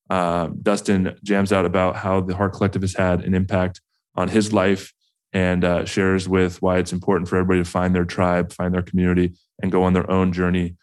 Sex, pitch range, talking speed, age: male, 90-95 Hz, 210 wpm, 20-39